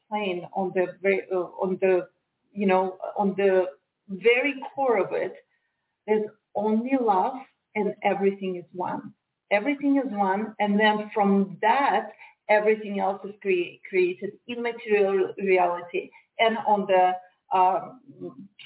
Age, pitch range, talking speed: 40-59, 190-225 Hz, 130 wpm